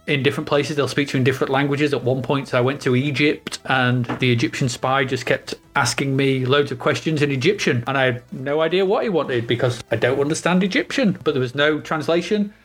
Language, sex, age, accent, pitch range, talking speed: English, male, 30-49, British, 130-165 Hz, 225 wpm